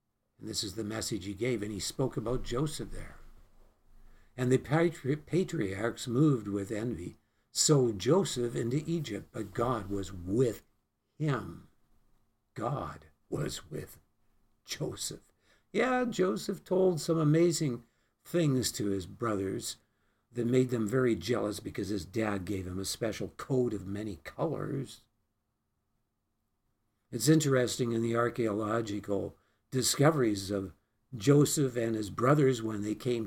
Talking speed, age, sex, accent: 130 wpm, 60-79, male, American